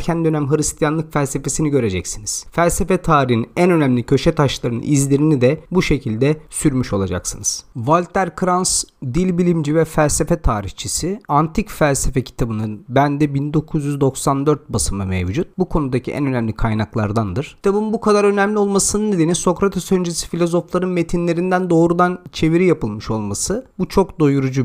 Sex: male